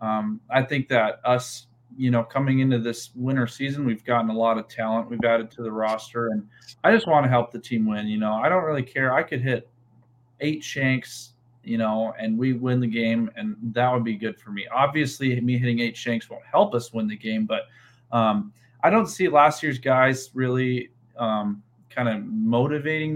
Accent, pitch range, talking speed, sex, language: American, 115-135 Hz, 210 wpm, male, English